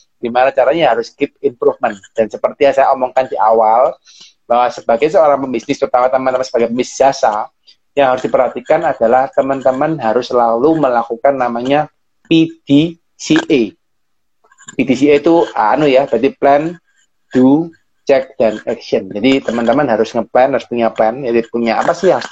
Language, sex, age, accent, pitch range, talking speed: Indonesian, male, 30-49, native, 120-150 Hz, 145 wpm